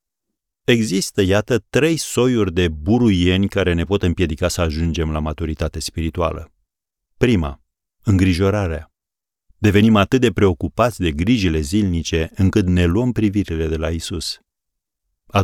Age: 40-59